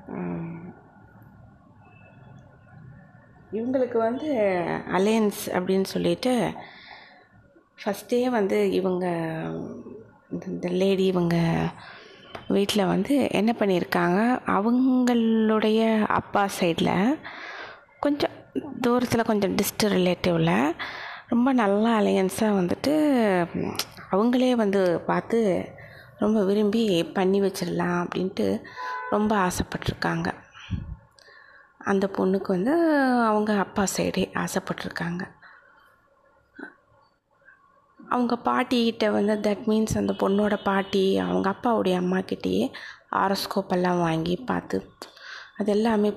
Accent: native